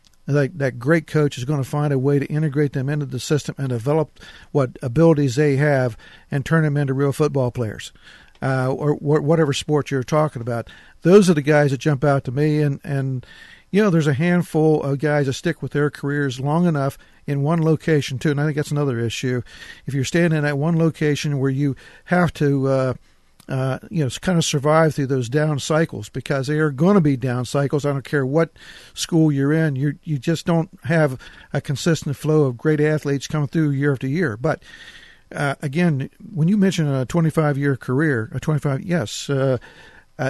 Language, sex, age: English, male, 50-69